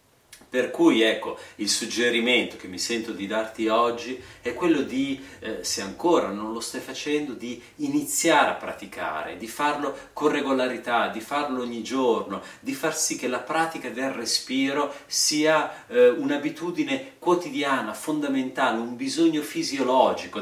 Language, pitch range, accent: Italian, 115-160 Hz, native